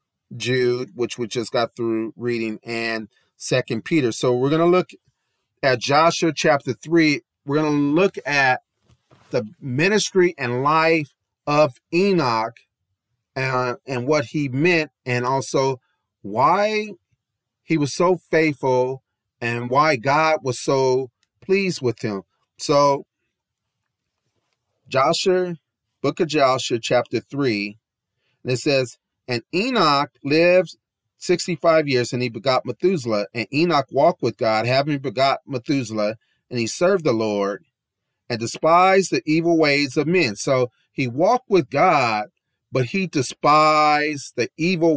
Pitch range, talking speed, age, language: 120-160 Hz, 130 wpm, 40-59, English